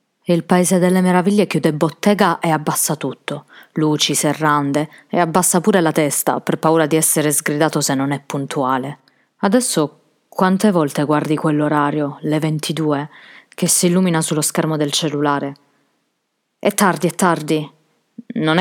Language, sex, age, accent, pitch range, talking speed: Italian, female, 20-39, native, 150-180 Hz, 140 wpm